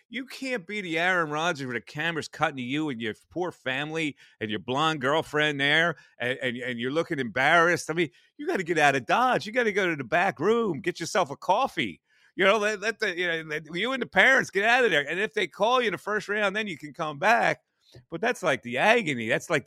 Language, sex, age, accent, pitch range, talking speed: English, male, 40-59, American, 125-185 Hz, 255 wpm